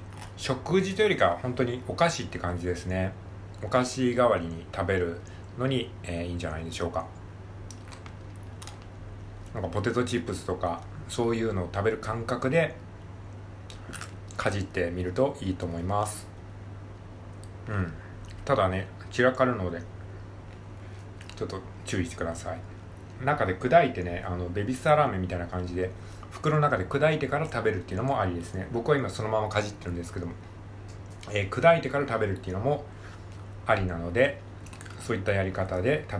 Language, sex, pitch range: Japanese, male, 95-110 Hz